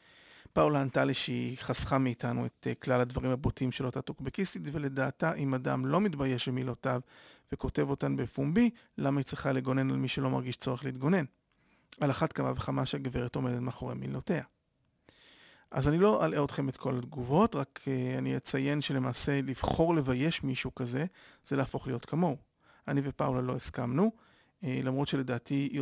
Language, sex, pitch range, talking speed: Hebrew, male, 125-145 Hz, 155 wpm